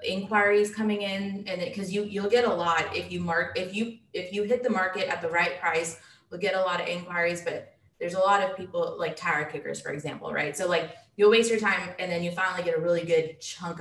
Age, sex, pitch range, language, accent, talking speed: 20-39, female, 165-200 Hz, English, American, 250 wpm